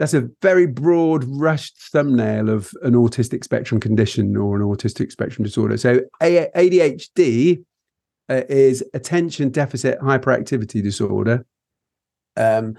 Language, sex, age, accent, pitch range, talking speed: English, male, 40-59, British, 115-140 Hz, 115 wpm